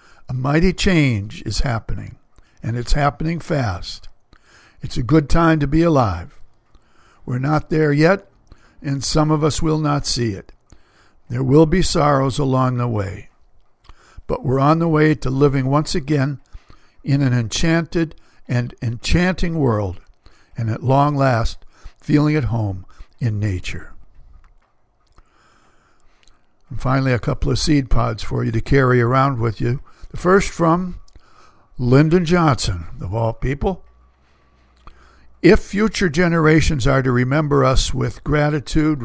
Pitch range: 120-155 Hz